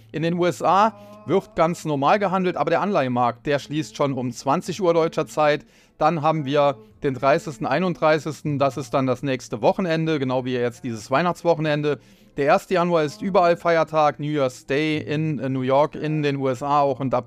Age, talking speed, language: 30-49, 180 wpm, German